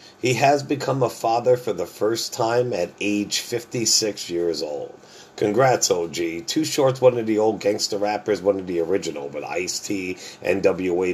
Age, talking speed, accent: 40-59, 170 wpm, American